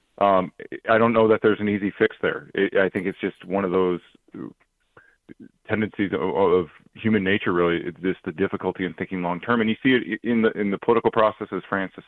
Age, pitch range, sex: 40-59, 85-100 Hz, male